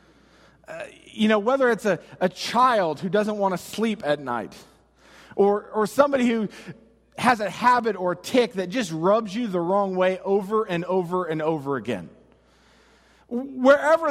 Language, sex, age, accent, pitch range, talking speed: English, male, 40-59, American, 185-245 Hz, 165 wpm